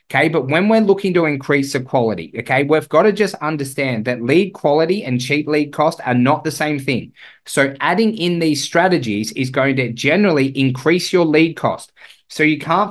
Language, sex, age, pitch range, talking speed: English, male, 20-39, 125-155 Hz, 200 wpm